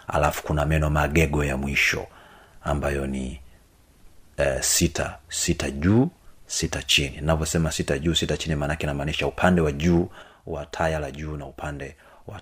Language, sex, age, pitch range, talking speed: Swahili, male, 30-49, 75-85 Hz, 160 wpm